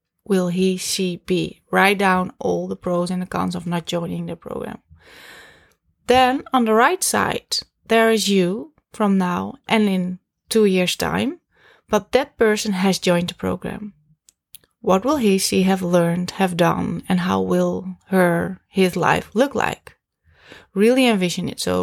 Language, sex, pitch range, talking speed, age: English, female, 180-225 Hz, 160 wpm, 20-39